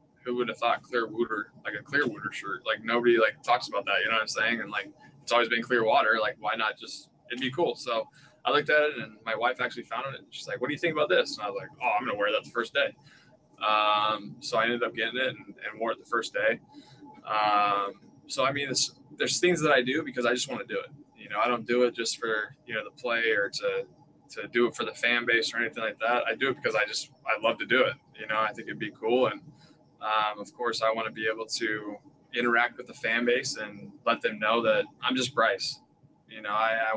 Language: English